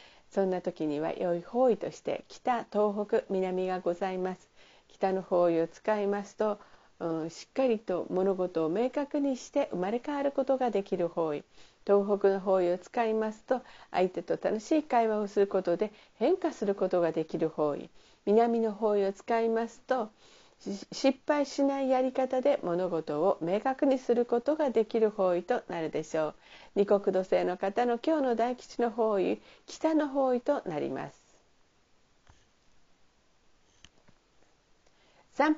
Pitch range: 185-250 Hz